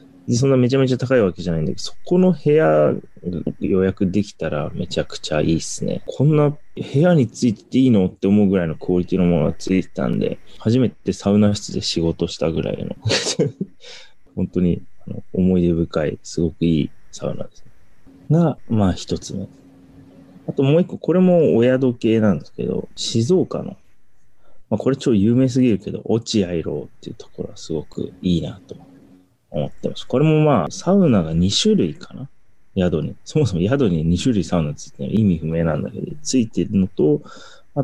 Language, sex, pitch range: Japanese, male, 90-125 Hz